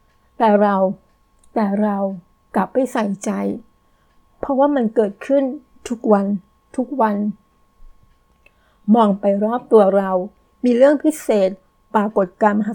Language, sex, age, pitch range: Thai, female, 60-79, 210-245 Hz